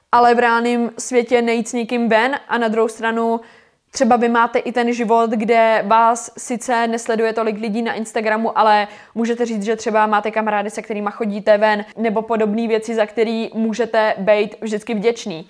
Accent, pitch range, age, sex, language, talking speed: native, 230-280 Hz, 20-39, female, Czech, 180 wpm